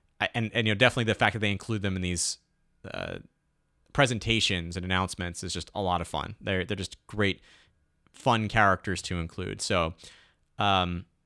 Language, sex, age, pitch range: English, male, 30-49, 95-115 Hz